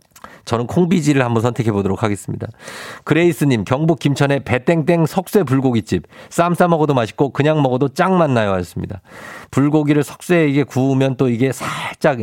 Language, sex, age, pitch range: Korean, male, 50-69, 115-155 Hz